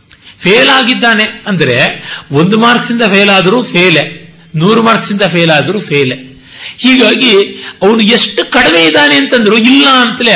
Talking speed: 135 wpm